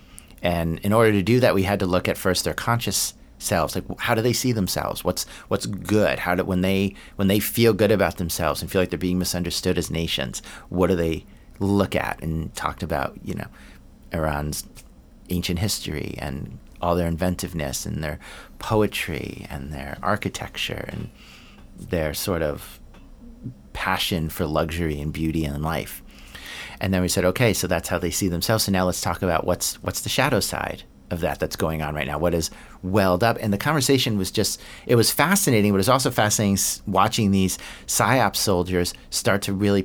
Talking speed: 195 wpm